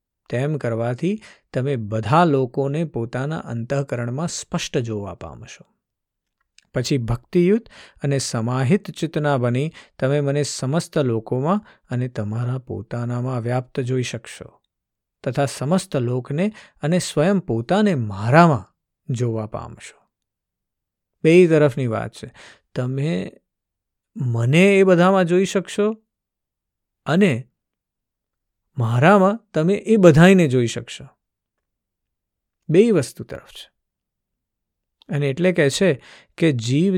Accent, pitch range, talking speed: native, 120-160 Hz, 80 wpm